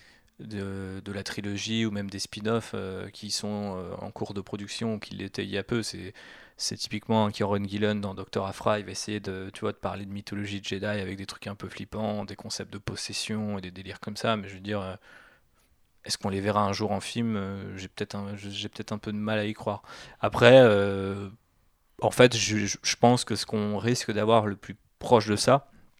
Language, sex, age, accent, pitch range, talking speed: French, male, 20-39, French, 100-110 Hz, 230 wpm